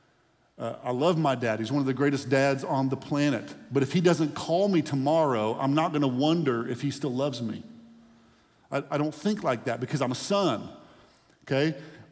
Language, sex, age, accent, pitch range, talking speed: English, male, 50-69, American, 115-145 Hz, 210 wpm